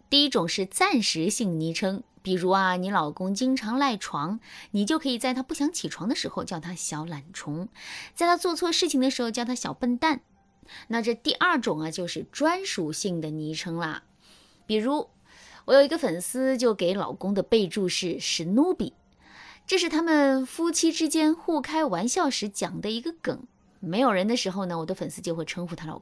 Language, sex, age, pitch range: Chinese, female, 20-39, 180-270 Hz